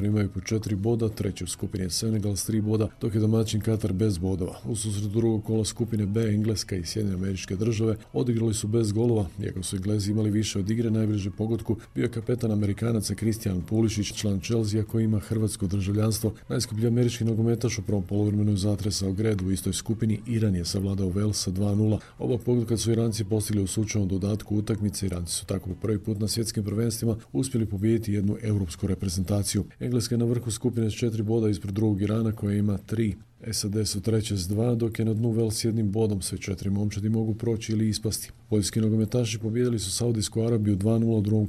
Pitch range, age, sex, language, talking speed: 100-115 Hz, 40-59, male, Croatian, 190 wpm